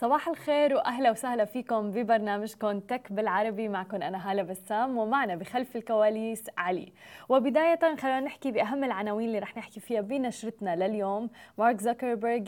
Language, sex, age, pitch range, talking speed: Arabic, female, 20-39, 215-260 Hz, 140 wpm